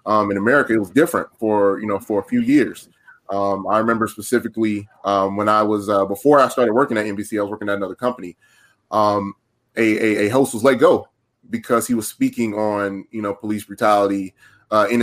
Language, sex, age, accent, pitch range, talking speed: English, male, 20-39, American, 105-130 Hz, 210 wpm